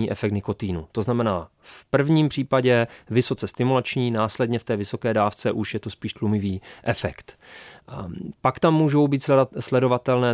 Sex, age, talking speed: male, 30-49, 145 wpm